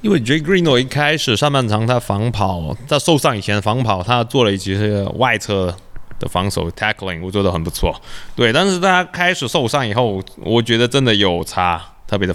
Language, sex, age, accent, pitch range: Chinese, male, 20-39, native, 95-135 Hz